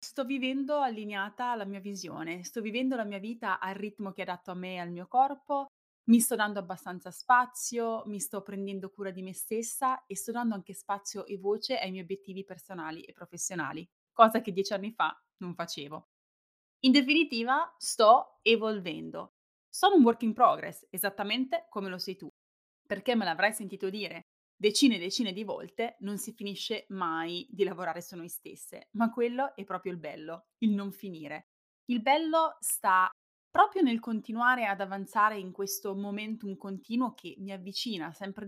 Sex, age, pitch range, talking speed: female, 20-39, 185-230 Hz, 175 wpm